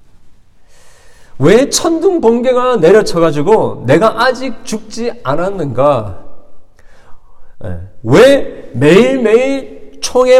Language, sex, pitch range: Korean, male, 145-235 Hz